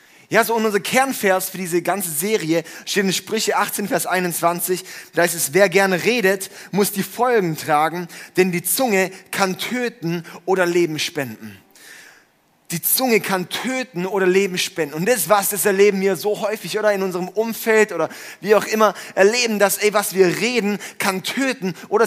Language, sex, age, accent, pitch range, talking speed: German, male, 30-49, German, 180-215 Hz, 175 wpm